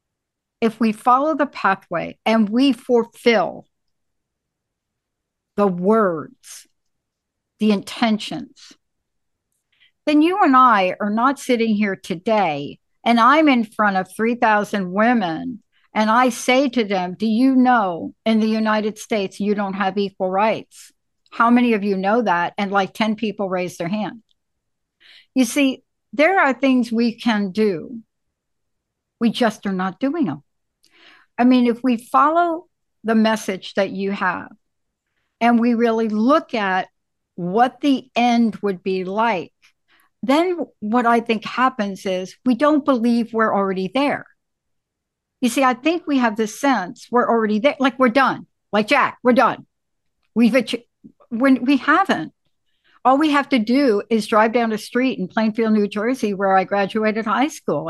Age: 60-79